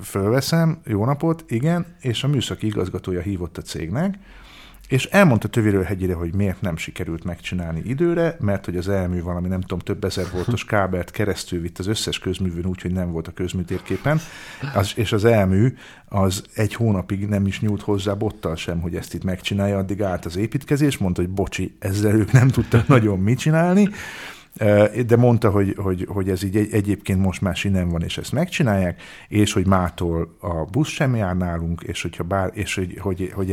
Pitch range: 90-115 Hz